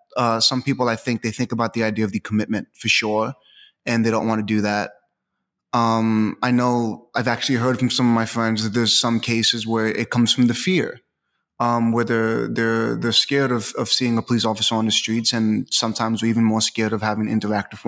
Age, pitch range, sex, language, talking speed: 20-39, 110-125 Hz, male, English, 225 wpm